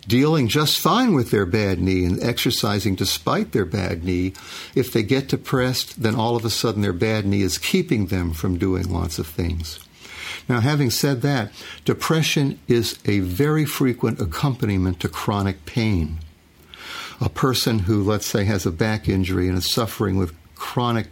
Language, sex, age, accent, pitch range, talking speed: Swedish, male, 60-79, American, 95-120 Hz, 170 wpm